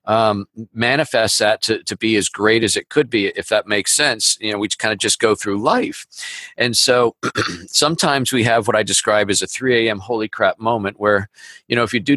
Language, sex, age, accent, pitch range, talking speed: English, male, 50-69, American, 105-115 Hz, 225 wpm